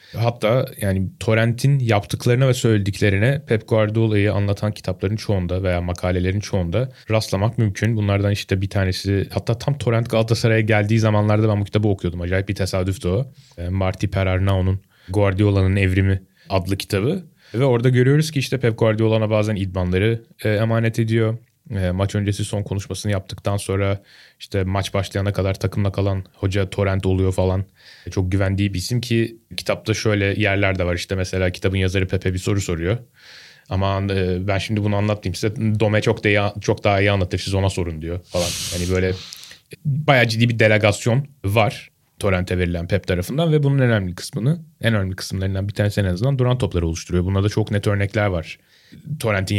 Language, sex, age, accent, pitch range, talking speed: Turkish, male, 30-49, native, 95-115 Hz, 165 wpm